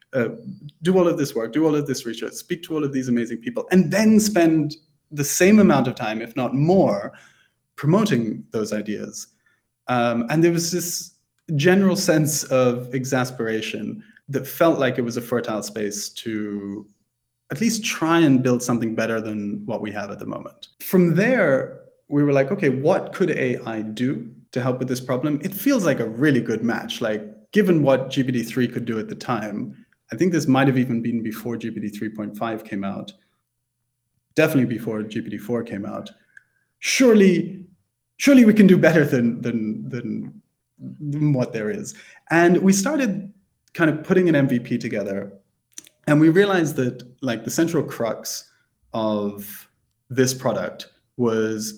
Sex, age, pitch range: male, 30-49, 115-170 Hz